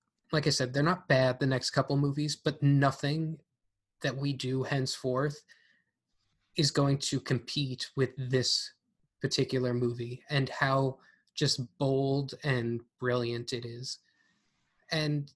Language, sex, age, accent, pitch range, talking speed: English, male, 20-39, American, 125-145 Hz, 130 wpm